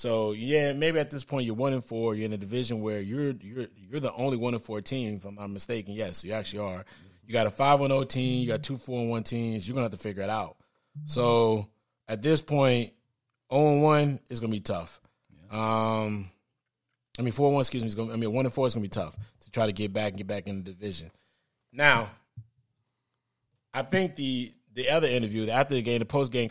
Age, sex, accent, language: 20-39, male, American, English